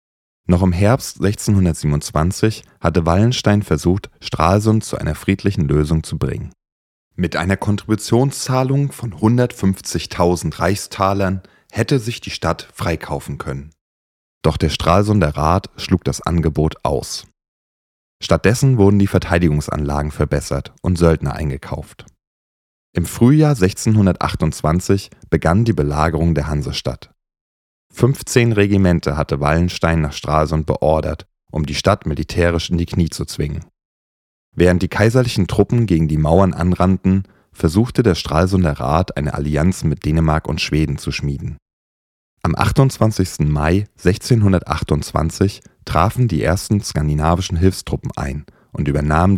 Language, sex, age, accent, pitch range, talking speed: German, male, 30-49, German, 75-100 Hz, 120 wpm